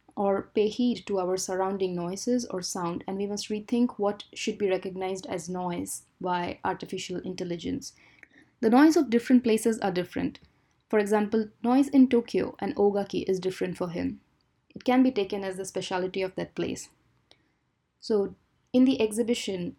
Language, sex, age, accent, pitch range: Japanese, female, 20-39, Indian, 190-235 Hz